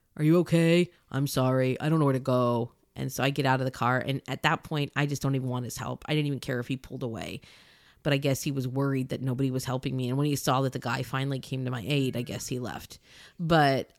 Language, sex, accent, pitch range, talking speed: English, female, American, 140-205 Hz, 285 wpm